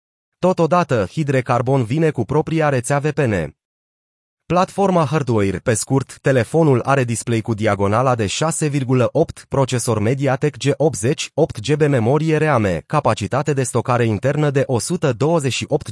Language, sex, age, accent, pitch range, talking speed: Romanian, male, 30-49, native, 125-160 Hz, 115 wpm